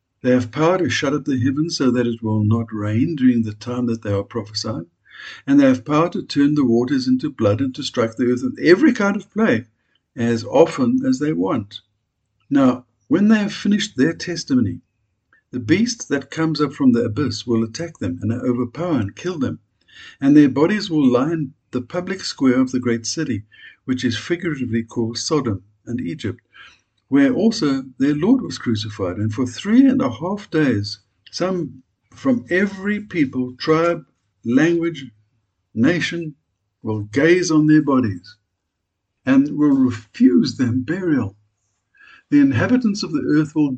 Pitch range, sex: 115-170 Hz, male